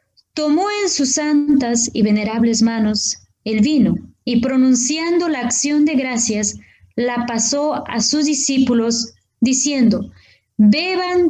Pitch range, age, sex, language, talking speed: 220-295 Hz, 20-39, female, Spanish, 115 wpm